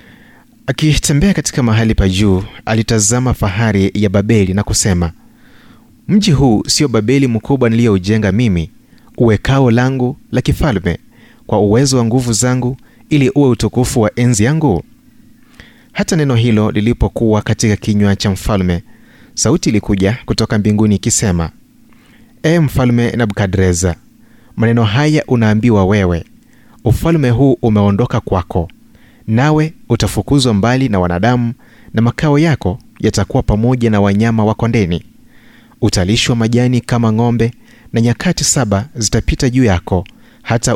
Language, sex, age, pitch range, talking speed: Swahili, male, 30-49, 105-130 Hz, 120 wpm